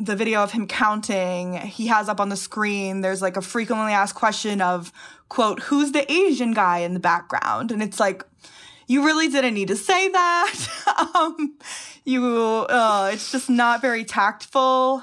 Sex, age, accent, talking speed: female, 20-39, American, 175 wpm